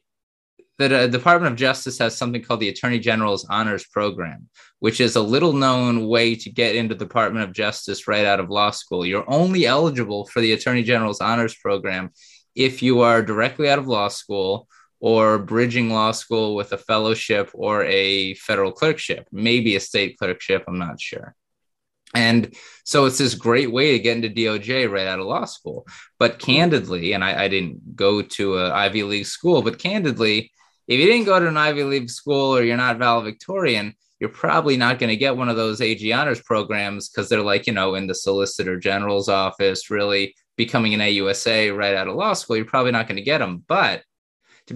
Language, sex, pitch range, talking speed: English, male, 100-125 Hz, 195 wpm